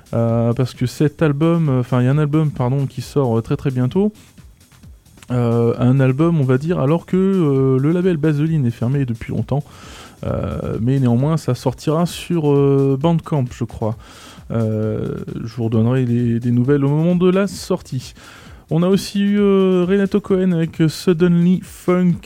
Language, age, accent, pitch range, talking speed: English, 20-39, French, 125-170 Hz, 175 wpm